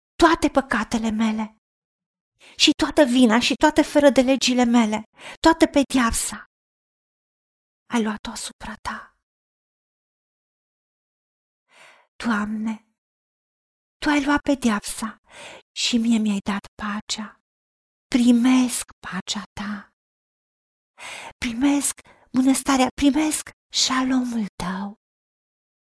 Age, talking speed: 40-59, 90 wpm